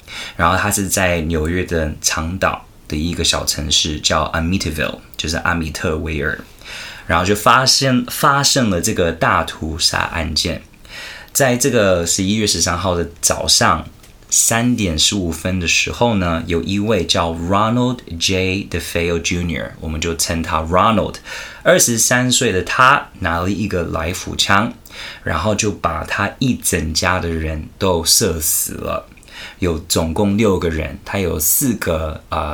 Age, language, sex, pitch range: 20-39, Chinese, male, 80-100 Hz